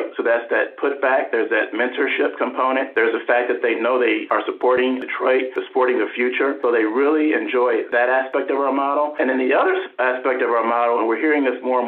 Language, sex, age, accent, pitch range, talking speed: English, male, 50-69, American, 120-170 Hz, 225 wpm